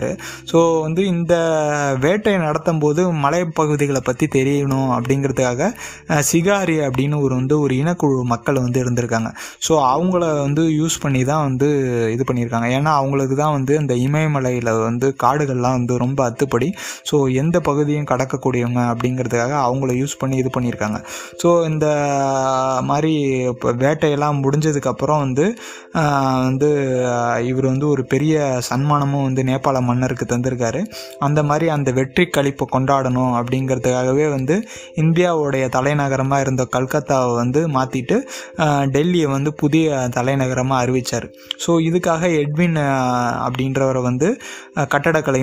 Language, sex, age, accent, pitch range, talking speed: Tamil, male, 20-39, native, 125-150 Hz, 85 wpm